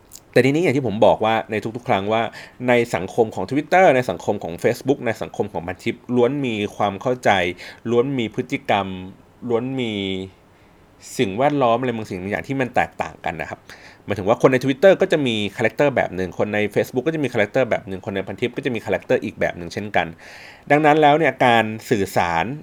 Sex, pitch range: male, 95-130 Hz